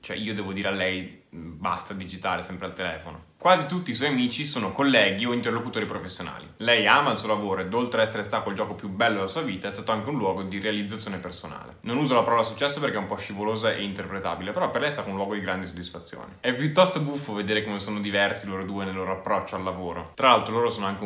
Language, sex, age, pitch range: English, male, 20-39, 95-110 Hz